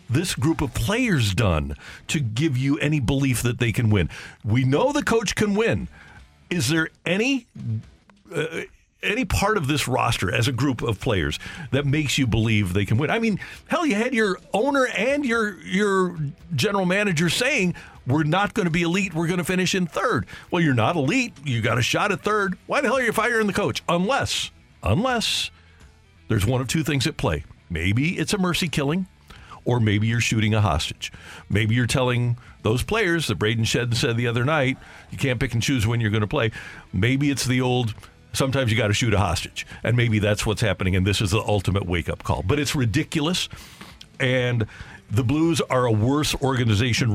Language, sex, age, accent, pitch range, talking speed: English, male, 50-69, American, 110-165 Hz, 200 wpm